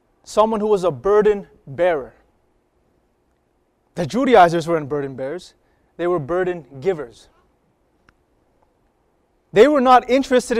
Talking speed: 90 wpm